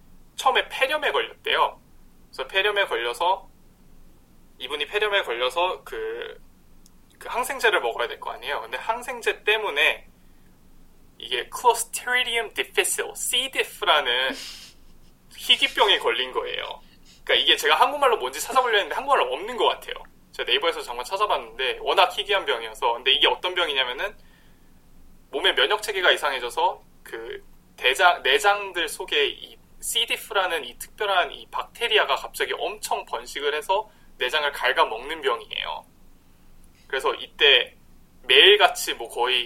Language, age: Korean, 20-39